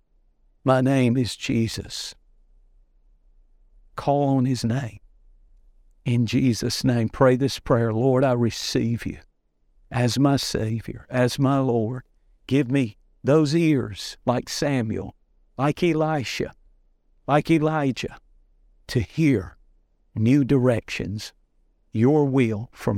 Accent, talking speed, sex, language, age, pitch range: American, 105 wpm, male, English, 50-69, 100-130 Hz